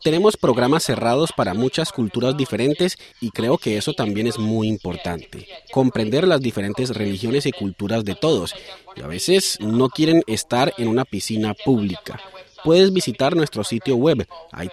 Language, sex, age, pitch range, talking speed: Spanish, male, 30-49, 100-140 Hz, 160 wpm